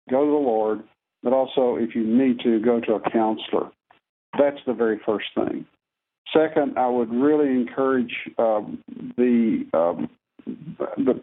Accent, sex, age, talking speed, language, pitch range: American, male, 60-79, 150 wpm, English, 115-150 Hz